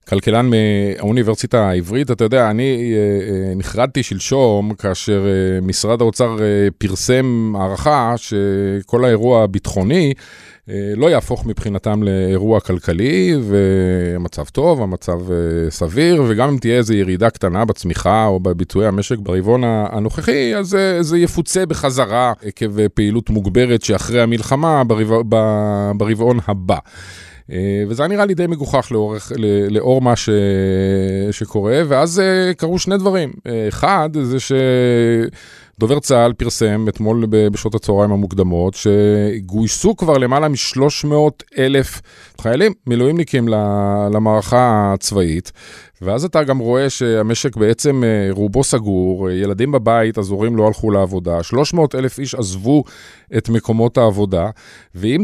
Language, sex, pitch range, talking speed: Hebrew, male, 100-130 Hz, 115 wpm